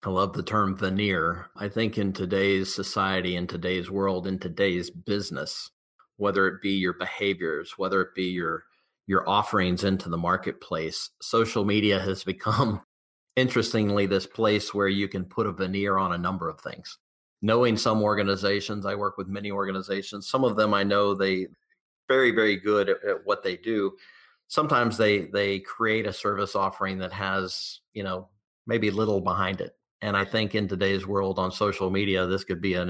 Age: 40-59